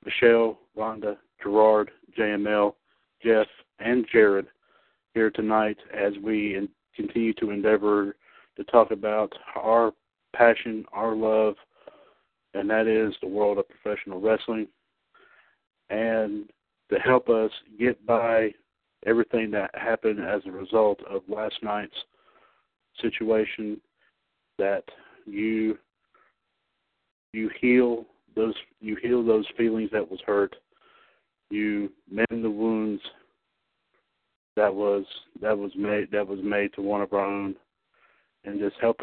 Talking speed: 120 wpm